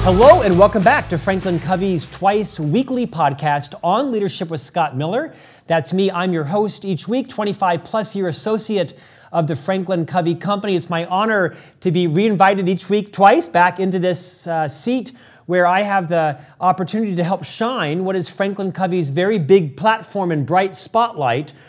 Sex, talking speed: male, 175 wpm